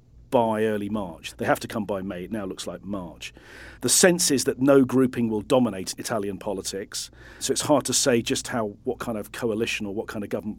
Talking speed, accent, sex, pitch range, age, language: 225 wpm, British, male, 100-125 Hz, 40-59, English